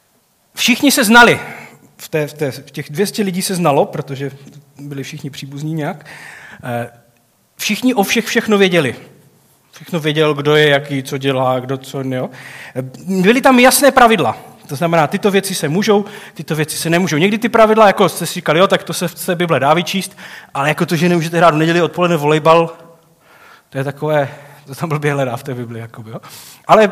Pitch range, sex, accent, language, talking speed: 140-180 Hz, male, native, Czech, 190 wpm